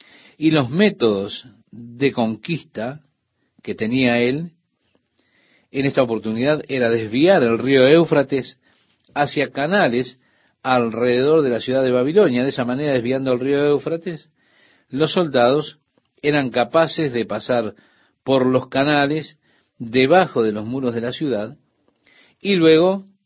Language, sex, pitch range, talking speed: Spanish, male, 120-155 Hz, 125 wpm